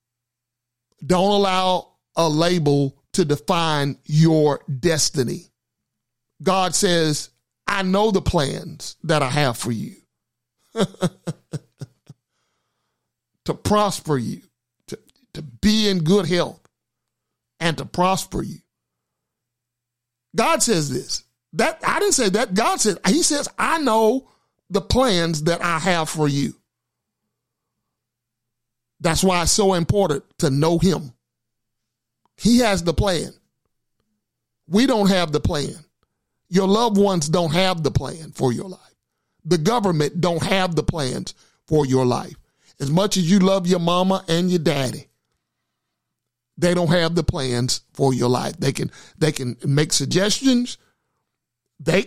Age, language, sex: 50-69, English, male